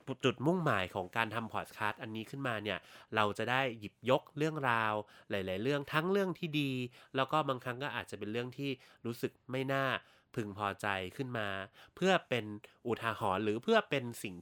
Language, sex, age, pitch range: Thai, male, 20-39, 105-135 Hz